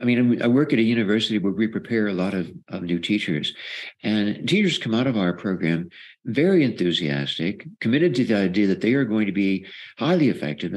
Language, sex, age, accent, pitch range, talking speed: English, male, 60-79, American, 105-130 Hz, 205 wpm